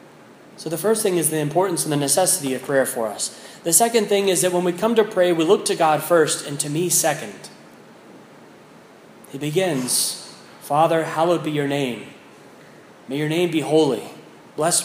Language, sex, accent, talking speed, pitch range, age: English, male, American, 185 wpm, 140-185 Hz, 30-49